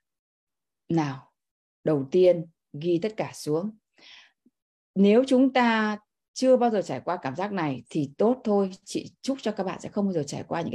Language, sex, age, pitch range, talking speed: Vietnamese, female, 20-39, 175-230 Hz, 185 wpm